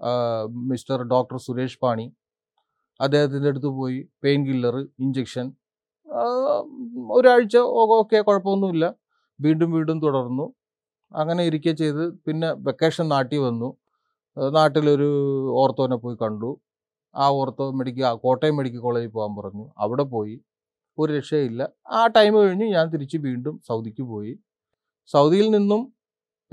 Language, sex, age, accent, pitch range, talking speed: Malayalam, male, 30-49, native, 125-170 Hz, 110 wpm